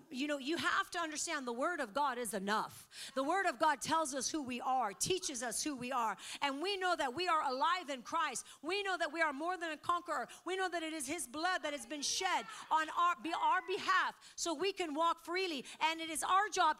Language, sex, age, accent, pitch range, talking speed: English, female, 40-59, American, 260-345 Hz, 245 wpm